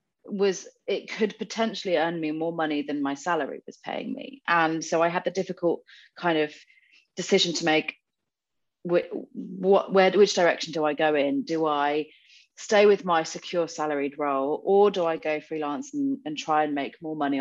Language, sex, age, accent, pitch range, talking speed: English, female, 30-49, British, 145-185 Hz, 185 wpm